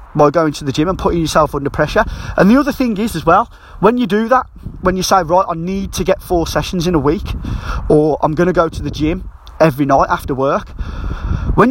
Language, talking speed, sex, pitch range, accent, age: English, 240 wpm, male, 135-210 Hz, British, 30-49